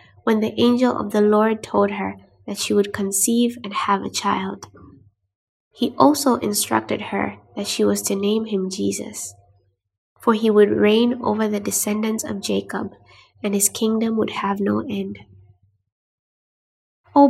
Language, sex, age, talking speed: English, female, 20-39, 155 wpm